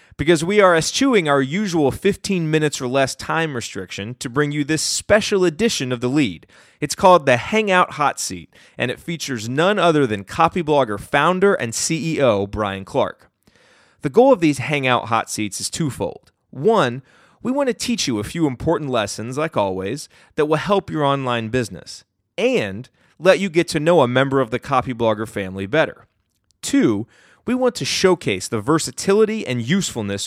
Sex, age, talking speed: male, 30-49, 175 wpm